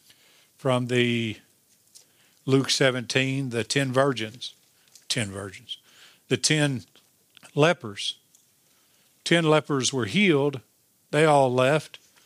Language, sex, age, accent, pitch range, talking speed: English, male, 50-69, American, 130-170 Hz, 95 wpm